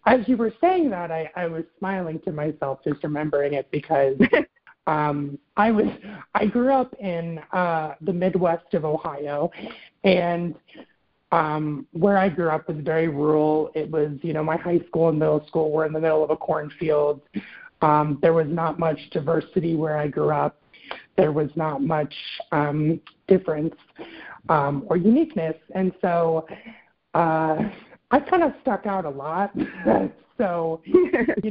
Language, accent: English, American